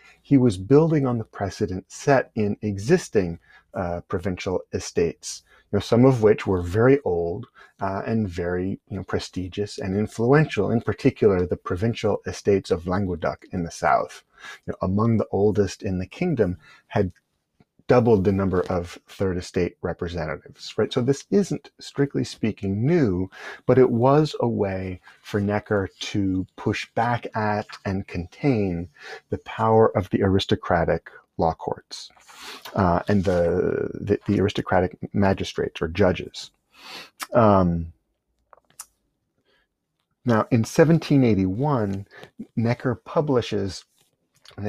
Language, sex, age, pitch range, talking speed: English, male, 30-49, 95-120 Hz, 120 wpm